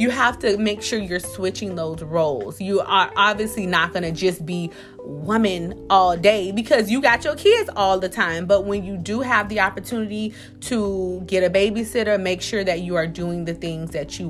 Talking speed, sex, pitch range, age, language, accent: 205 wpm, female, 175-230 Hz, 30-49, English, American